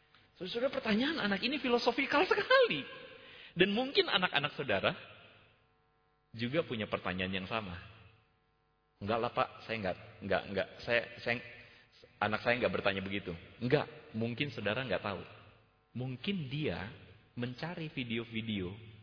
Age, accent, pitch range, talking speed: 30-49, native, 105-165 Hz, 125 wpm